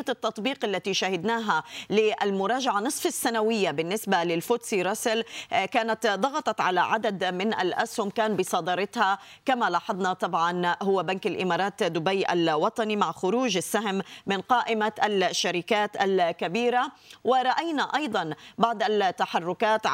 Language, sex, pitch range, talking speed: Arabic, female, 185-225 Hz, 110 wpm